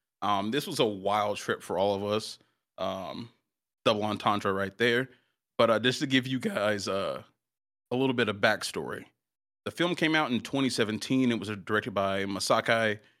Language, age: English, 30-49